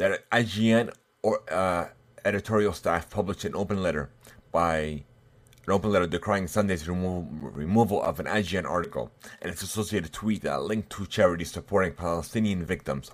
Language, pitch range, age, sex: English, 95-125 Hz, 30-49, male